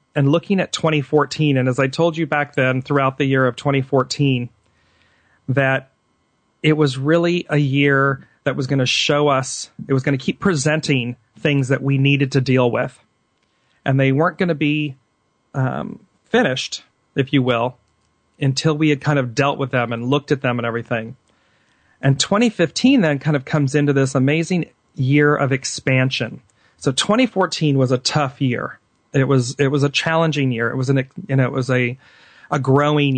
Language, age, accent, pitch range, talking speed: English, 40-59, American, 130-150 Hz, 180 wpm